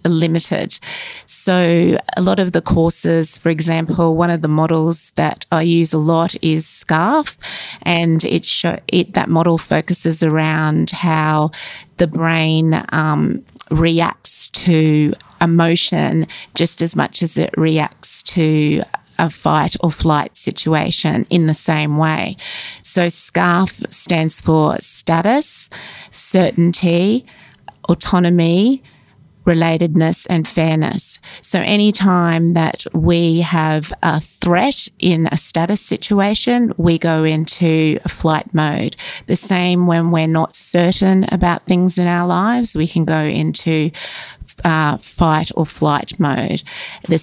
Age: 30-49